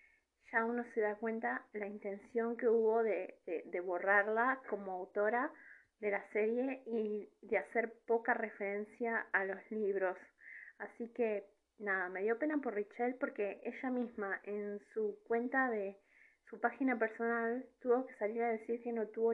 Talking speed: 160 wpm